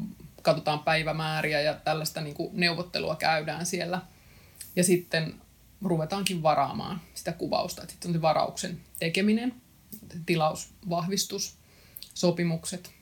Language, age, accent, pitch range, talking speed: Finnish, 30-49, native, 155-185 Hz, 90 wpm